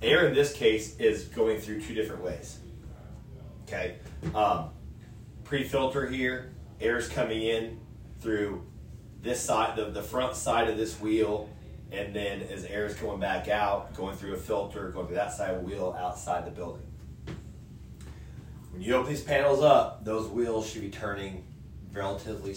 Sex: male